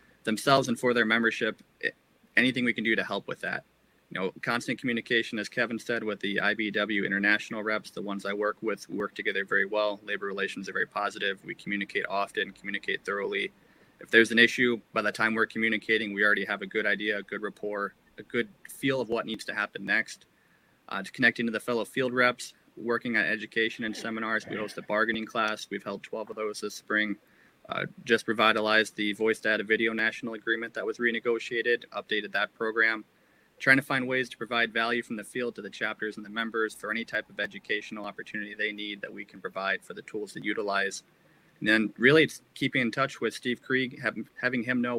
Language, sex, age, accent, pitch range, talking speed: English, male, 20-39, American, 105-115 Hz, 210 wpm